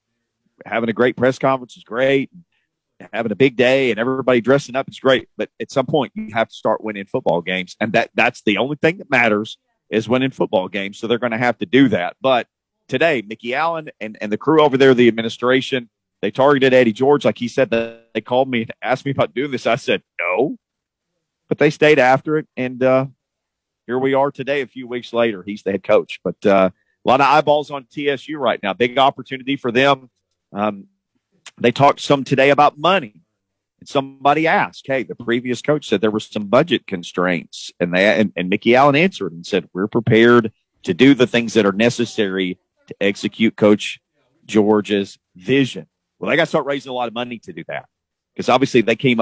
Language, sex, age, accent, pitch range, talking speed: English, male, 40-59, American, 110-135 Hz, 210 wpm